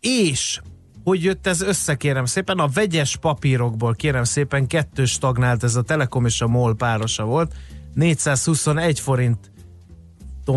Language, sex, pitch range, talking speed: Hungarian, male, 120-150 Hz, 135 wpm